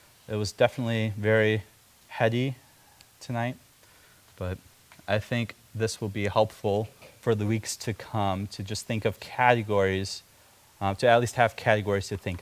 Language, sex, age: English, male, 30-49